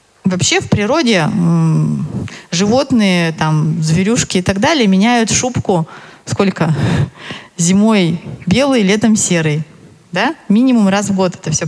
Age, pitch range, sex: 20-39, 170-215 Hz, female